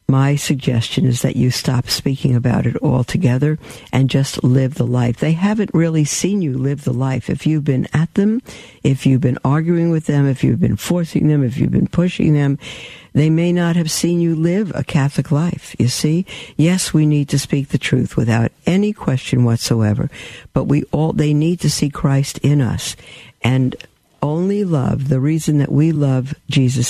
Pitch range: 130-155 Hz